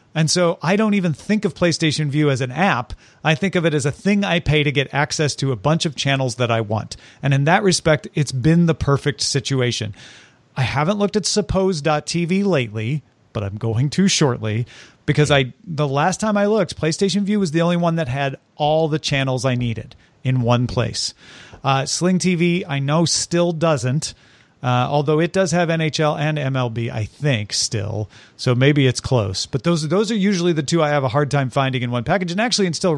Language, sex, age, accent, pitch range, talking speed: English, male, 40-59, American, 125-175 Hz, 210 wpm